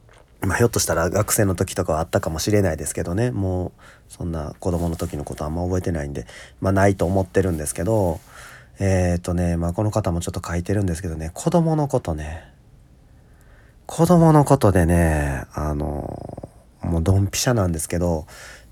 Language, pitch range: Japanese, 85-110 Hz